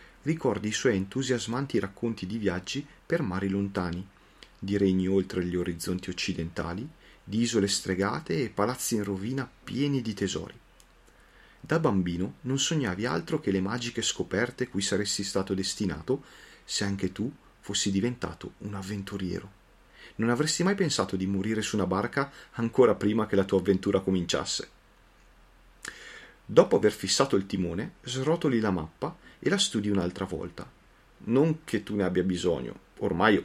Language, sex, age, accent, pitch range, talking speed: Italian, male, 40-59, native, 95-120 Hz, 145 wpm